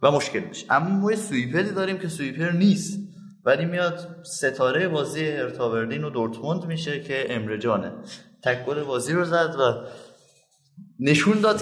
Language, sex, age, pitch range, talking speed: Persian, male, 20-39, 115-165 Hz, 140 wpm